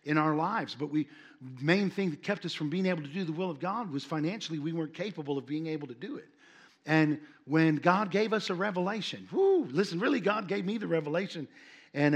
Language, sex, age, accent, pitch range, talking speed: English, male, 50-69, American, 155-205 Hz, 225 wpm